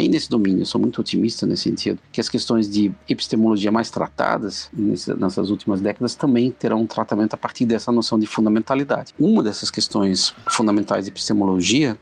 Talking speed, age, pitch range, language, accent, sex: 175 wpm, 50-69, 100-115 Hz, Portuguese, Brazilian, male